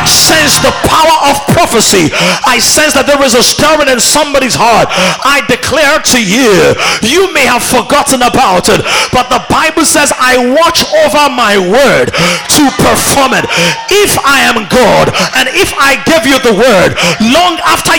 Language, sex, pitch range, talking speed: English, male, 245-315 Hz, 165 wpm